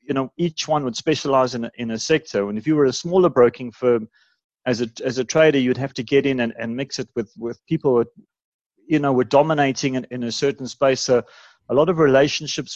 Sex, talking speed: male, 235 wpm